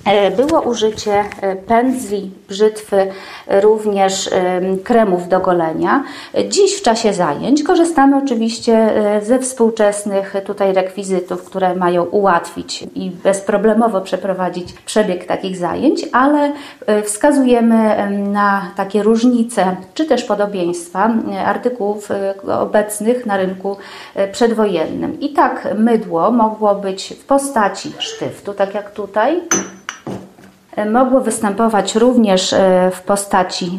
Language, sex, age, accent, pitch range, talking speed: Polish, female, 30-49, native, 190-235 Hz, 100 wpm